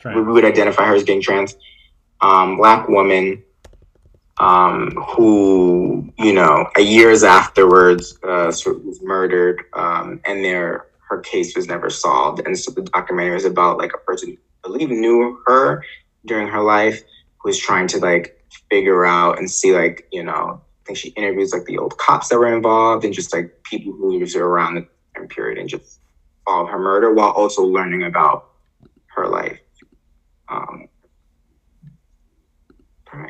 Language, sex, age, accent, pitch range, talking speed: English, male, 20-39, American, 85-125 Hz, 165 wpm